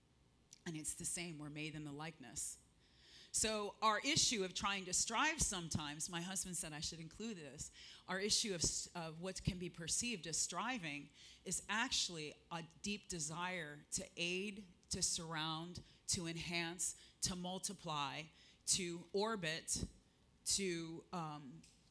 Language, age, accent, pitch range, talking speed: English, 30-49, American, 160-200 Hz, 135 wpm